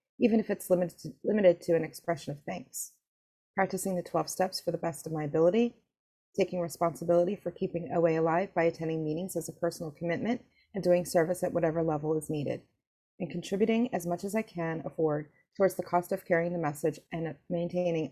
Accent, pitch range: American, 145-180 Hz